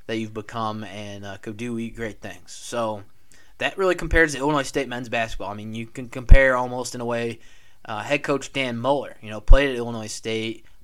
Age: 20-39